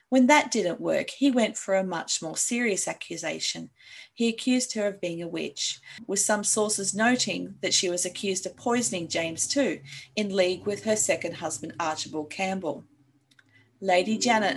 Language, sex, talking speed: English, female, 170 wpm